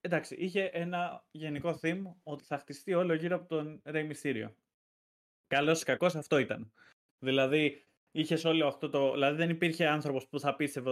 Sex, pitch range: male, 135-175 Hz